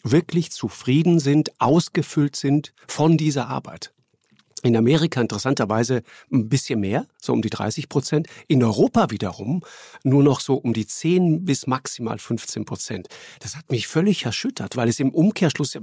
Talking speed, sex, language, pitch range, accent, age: 160 wpm, male, German, 115-150 Hz, German, 50-69